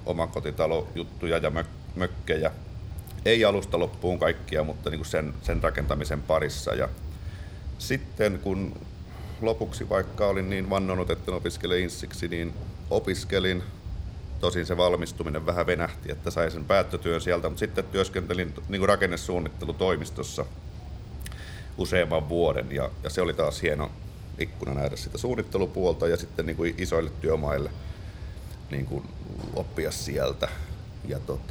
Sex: male